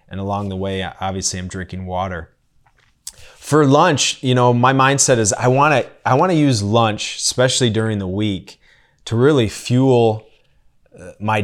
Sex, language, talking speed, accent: male, English, 150 wpm, American